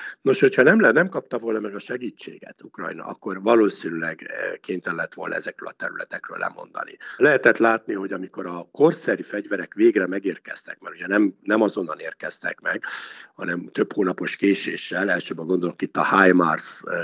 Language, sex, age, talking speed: Hungarian, male, 60-79, 160 wpm